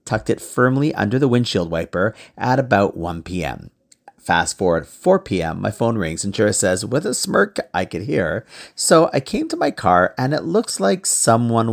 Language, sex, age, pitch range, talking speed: English, male, 40-59, 100-155 Hz, 195 wpm